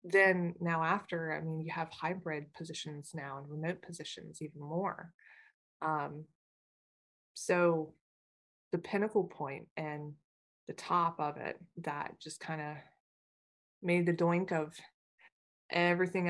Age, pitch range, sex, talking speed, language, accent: 20-39, 150-170 Hz, female, 125 wpm, English, American